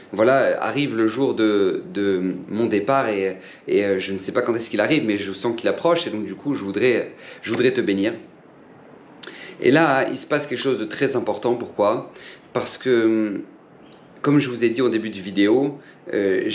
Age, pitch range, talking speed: 40-59, 105-125 Hz, 205 wpm